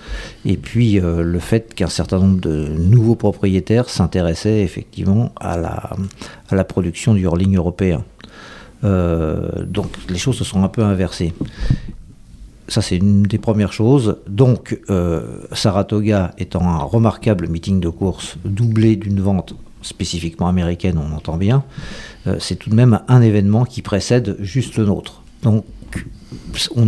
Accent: French